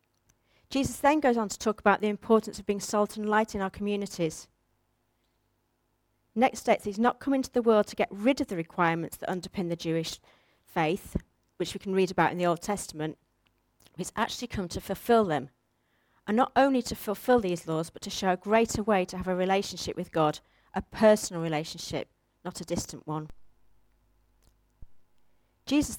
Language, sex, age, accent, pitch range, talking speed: English, female, 40-59, British, 165-225 Hz, 180 wpm